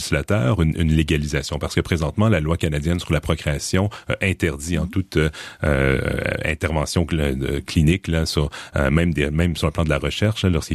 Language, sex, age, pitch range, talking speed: French, male, 40-59, 75-90 Hz, 175 wpm